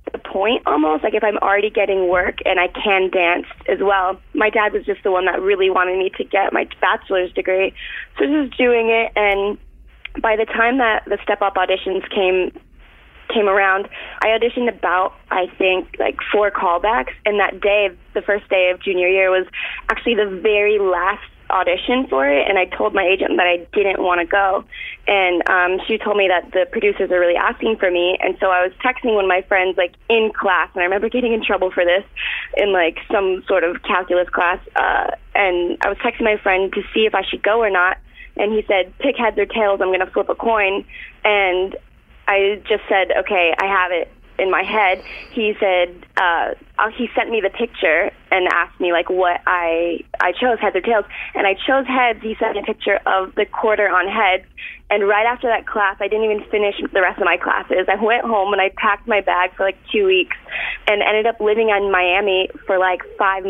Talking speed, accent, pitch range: 215 wpm, American, 185-215 Hz